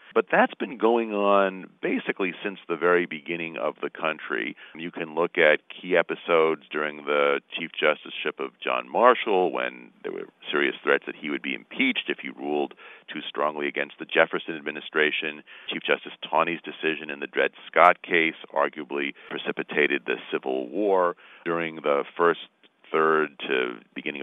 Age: 40-59